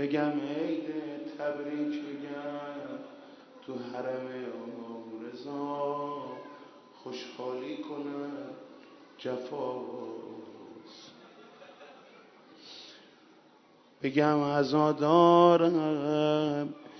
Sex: male